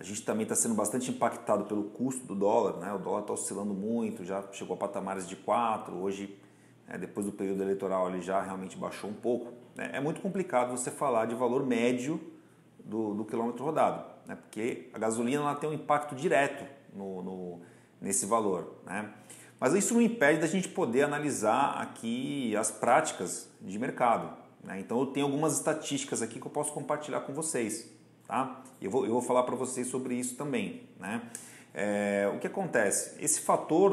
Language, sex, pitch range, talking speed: Portuguese, male, 105-155 Hz, 185 wpm